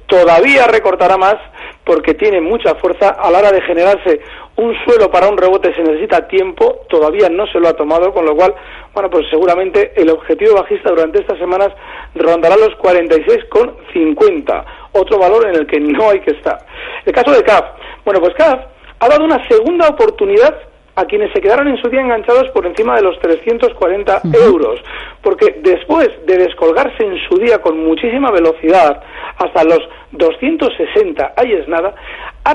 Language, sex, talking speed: Spanish, male, 170 wpm